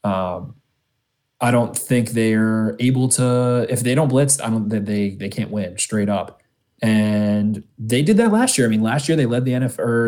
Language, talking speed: English, 210 wpm